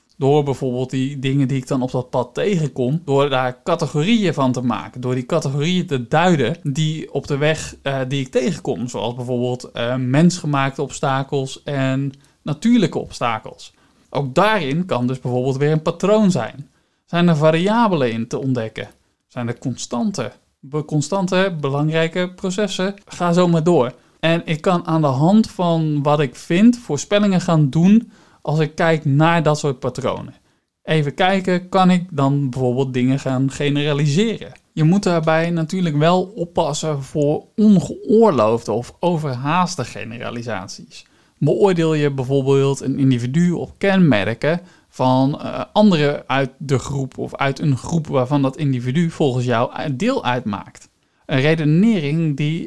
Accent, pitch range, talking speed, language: Dutch, 135-175 Hz, 150 wpm, Dutch